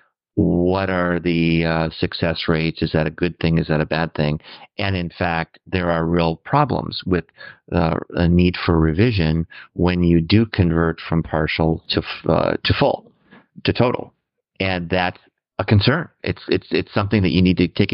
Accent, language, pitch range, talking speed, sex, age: American, English, 85-105 Hz, 180 wpm, male, 50-69